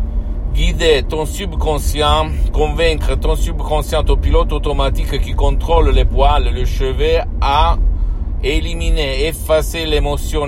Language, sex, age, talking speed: Italian, male, 50-69, 110 wpm